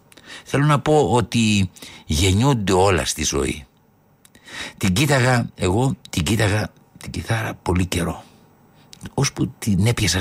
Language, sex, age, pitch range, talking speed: Greek, male, 60-79, 85-120 Hz, 120 wpm